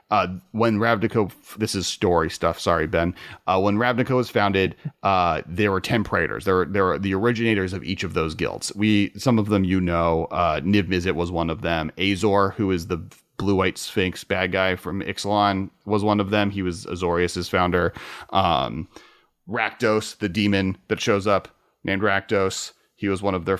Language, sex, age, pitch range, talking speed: English, male, 30-49, 95-115 Hz, 185 wpm